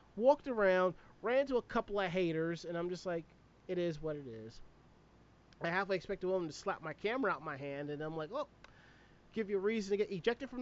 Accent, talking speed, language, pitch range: American, 235 wpm, English, 165-215 Hz